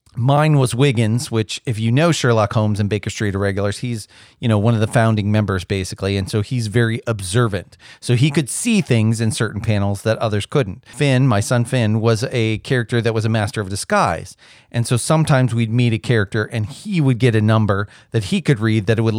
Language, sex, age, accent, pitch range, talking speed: English, male, 40-59, American, 105-130 Hz, 220 wpm